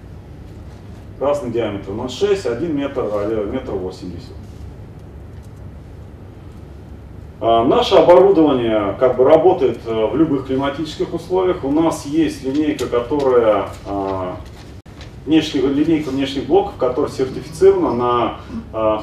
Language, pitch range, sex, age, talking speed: Russian, 100-150 Hz, male, 30-49, 100 wpm